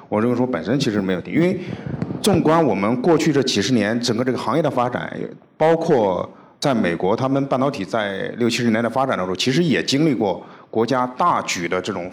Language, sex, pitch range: Chinese, male, 95-135 Hz